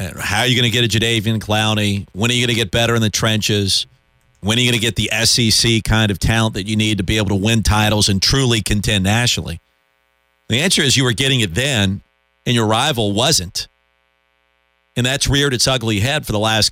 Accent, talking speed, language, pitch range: American, 230 wpm, English, 85-120 Hz